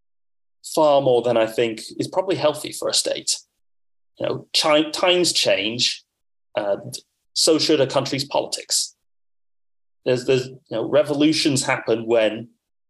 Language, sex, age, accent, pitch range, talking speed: English, male, 30-49, British, 100-135 Hz, 135 wpm